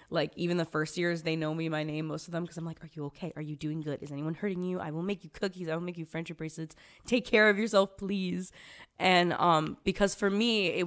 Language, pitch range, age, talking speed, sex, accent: English, 150-170 Hz, 10-29, 270 wpm, female, American